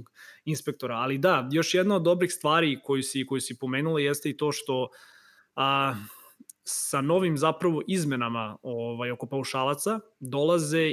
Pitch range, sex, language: 130-155 Hz, male, Croatian